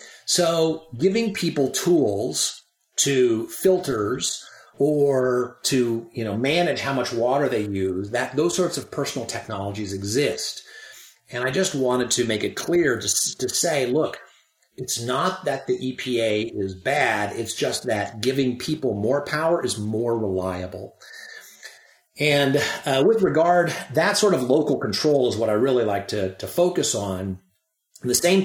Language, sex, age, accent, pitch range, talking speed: English, male, 40-59, American, 110-145 Hz, 155 wpm